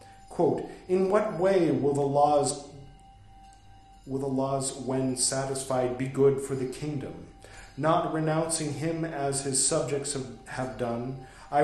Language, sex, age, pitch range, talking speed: English, male, 40-59, 120-160 Hz, 125 wpm